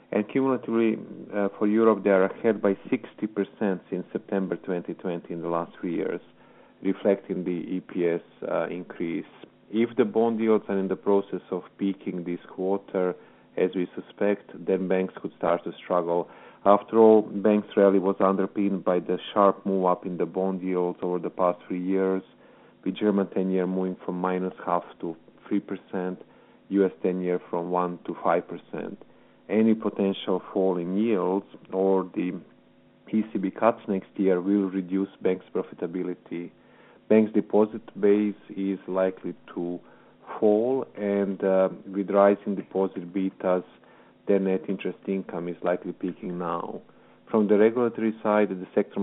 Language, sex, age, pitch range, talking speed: English, male, 40-59, 90-100 Hz, 145 wpm